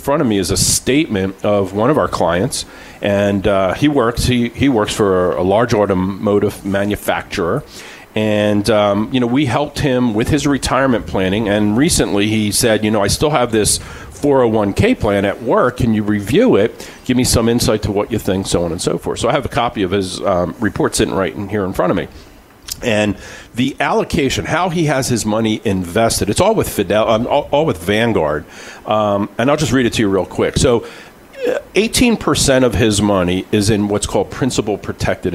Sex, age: male, 40-59